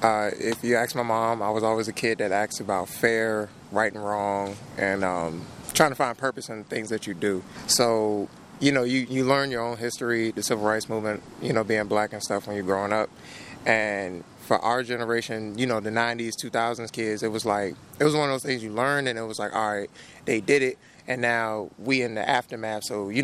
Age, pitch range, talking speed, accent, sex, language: 20-39, 105-125 Hz, 240 wpm, American, male, English